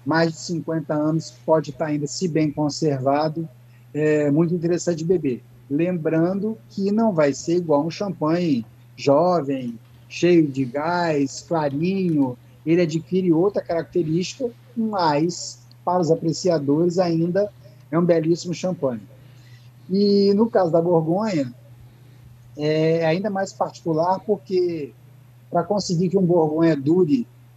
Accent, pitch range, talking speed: Brazilian, 135-170 Hz, 125 wpm